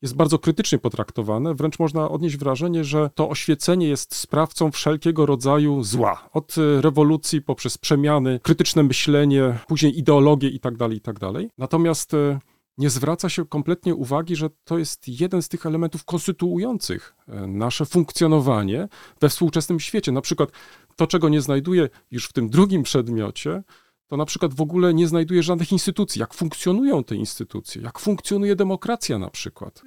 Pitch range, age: 135-170 Hz, 40-59